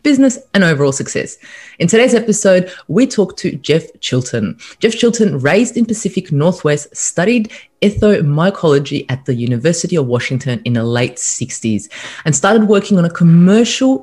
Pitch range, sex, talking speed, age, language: 135-195 Hz, female, 150 wpm, 30-49, English